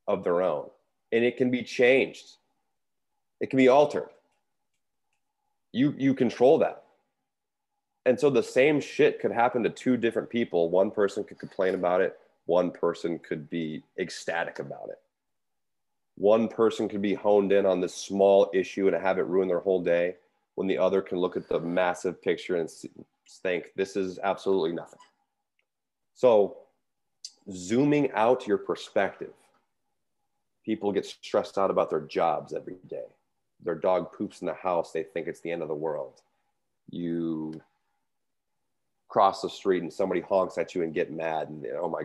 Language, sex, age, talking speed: English, male, 30-49, 165 wpm